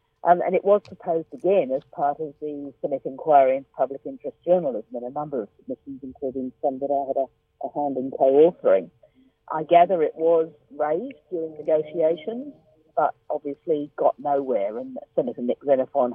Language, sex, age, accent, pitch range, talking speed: English, female, 50-69, British, 135-190 Hz, 170 wpm